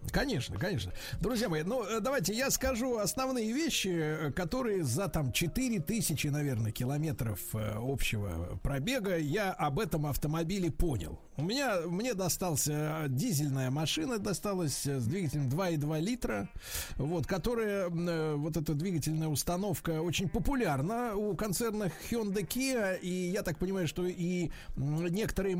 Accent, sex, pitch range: native, male, 150-200 Hz